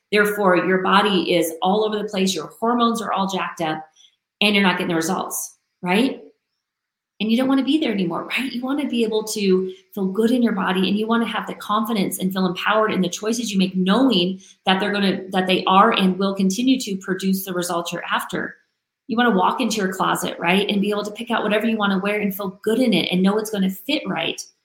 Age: 30-49